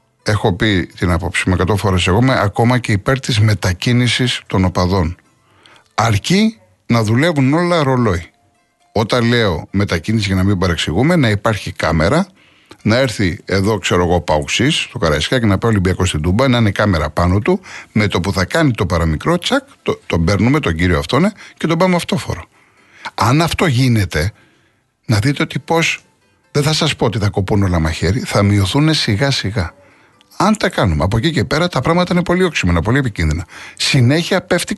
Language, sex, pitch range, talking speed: Greek, male, 100-155 Hz, 175 wpm